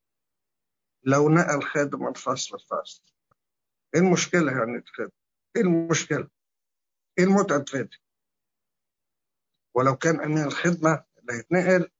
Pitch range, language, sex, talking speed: 120-160 Hz, English, male, 85 wpm